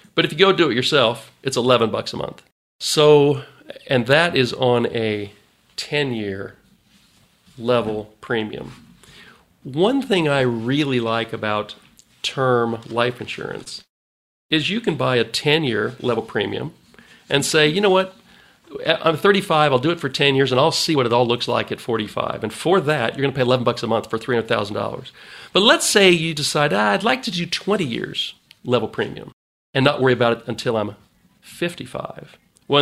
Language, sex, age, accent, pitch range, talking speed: English, male, 40-59, American, 115-150 Hz, 175 wpm